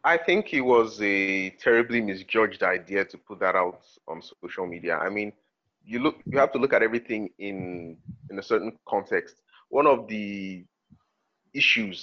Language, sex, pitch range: English, male, 100-120 Hz